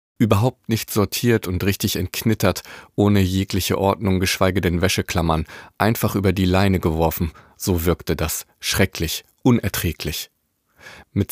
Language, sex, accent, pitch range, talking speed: German, male, German, 90-105 Hz, 120 wpm